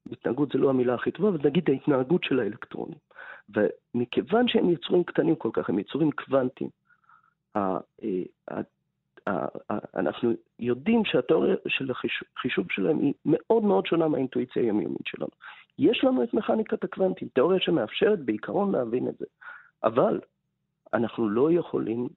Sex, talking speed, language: male, 130 wpm, Hebrew